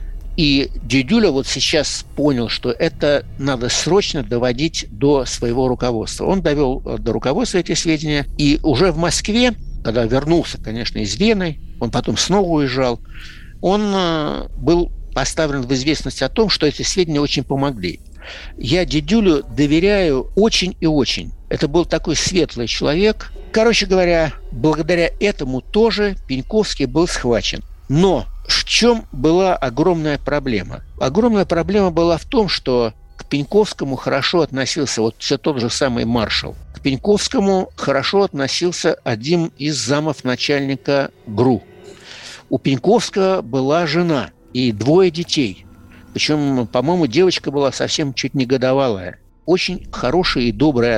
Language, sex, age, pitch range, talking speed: Russian, male, 60-79, 125-175 Hz, 130 wpm